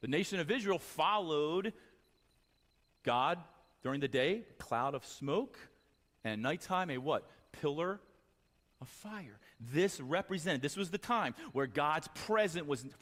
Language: English